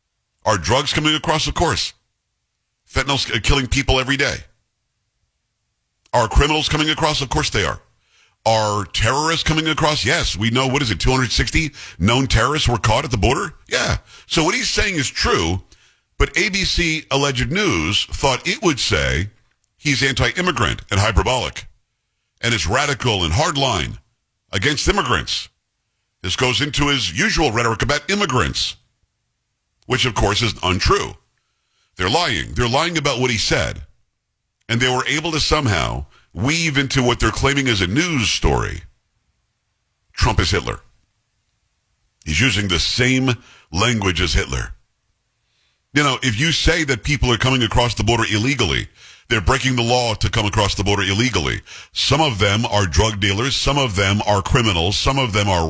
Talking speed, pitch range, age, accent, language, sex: 160 wpm, 105-135 Hz, 50-69, American, English, male